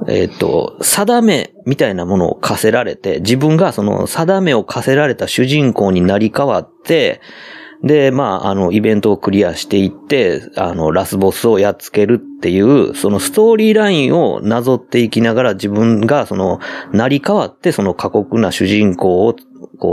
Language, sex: Japanese, male